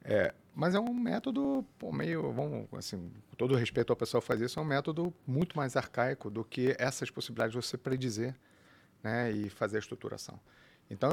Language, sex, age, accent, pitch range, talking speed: Portuguese, male, 40-59, Brazilian, 110-130 Hz, 200 wpm